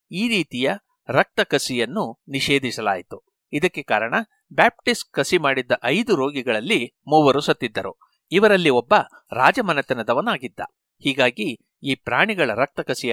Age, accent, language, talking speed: 60-79, native, Kannada, 100 wpm